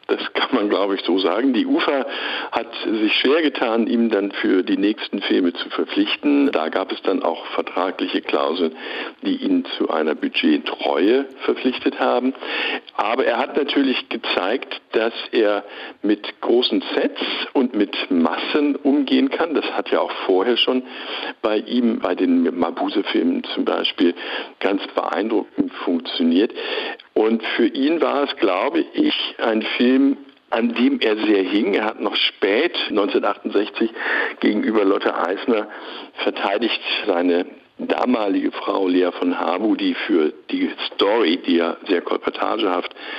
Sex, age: male, 60-79